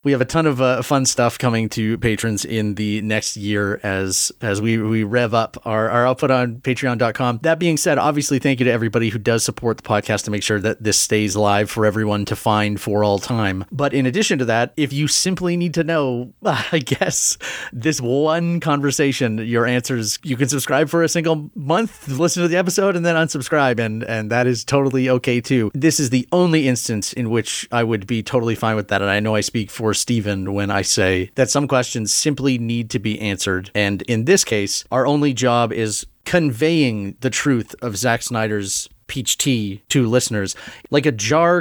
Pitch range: 110-140 Hz